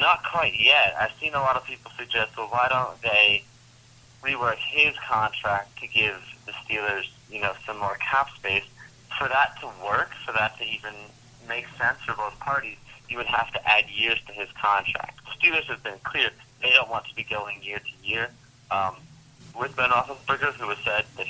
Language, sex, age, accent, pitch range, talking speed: English, male, 30-49, American, 105-125 Hz, 195 wpm